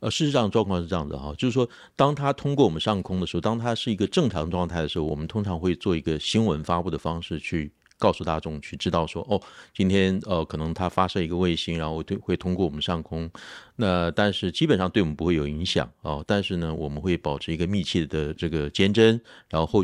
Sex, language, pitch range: male, Chinese, 80-105 Hz